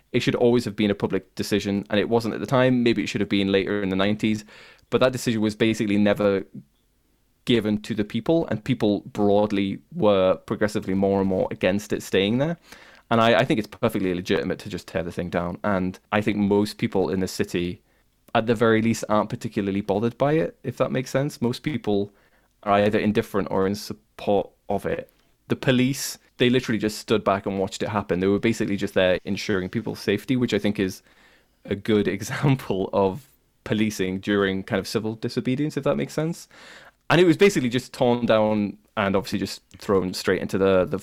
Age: 20-39